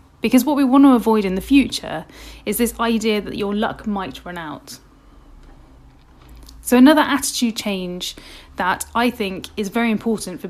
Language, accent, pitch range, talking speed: English, British, 190-245 Hz, 165 wpm